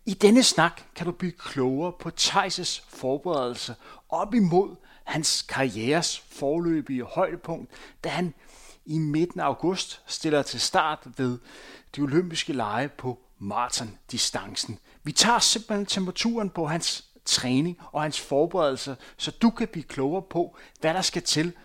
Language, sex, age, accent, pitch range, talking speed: Danish, male, 30-49, native, 135-180 Hz, 140 wpm